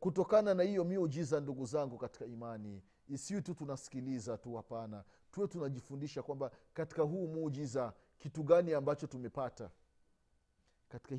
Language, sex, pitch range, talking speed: Swahili, male, 115-175 Hz, 130 wpm